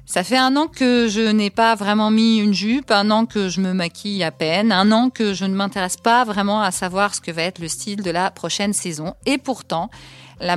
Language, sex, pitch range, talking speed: French, female, 190-245 Hz, 245 wpm